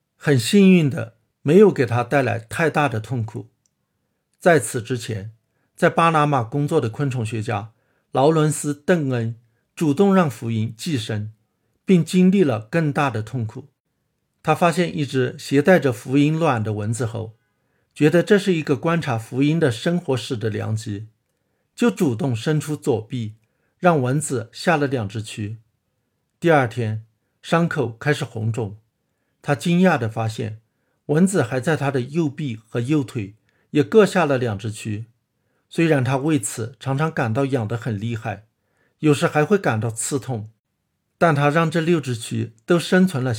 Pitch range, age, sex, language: 115-155 Hz, 50-69, male, Chinese